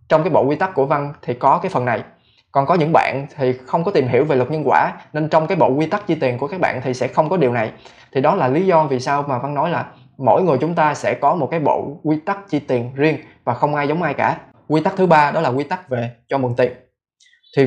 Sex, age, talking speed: male, 20-39, 290 wpm